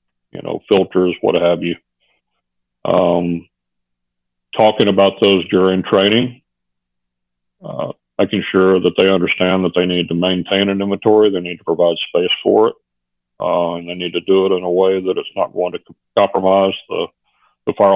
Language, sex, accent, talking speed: English, male, American, 170 wpm